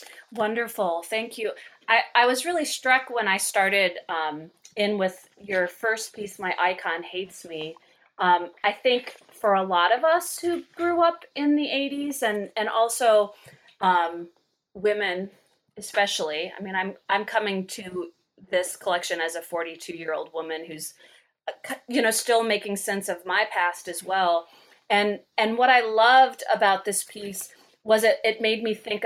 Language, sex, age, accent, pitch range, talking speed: English, female, 30-49, American, 180-225 Hz, 165 wpm